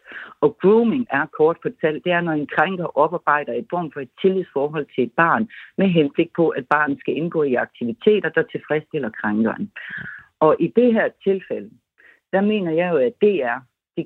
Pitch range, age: 150-200 Hz, 60-79